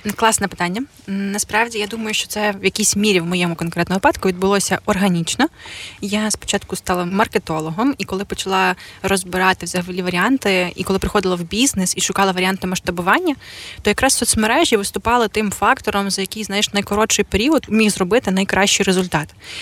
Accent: native